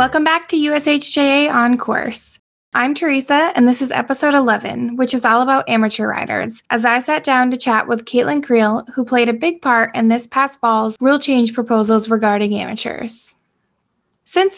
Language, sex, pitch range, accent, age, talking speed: English, female, 225-270 Hz, American, 10-29, 175 wpm